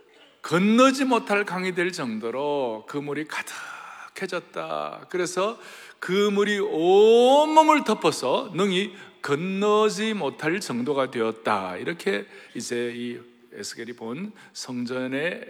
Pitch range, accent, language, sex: 135-205 Hz, native, Korean, male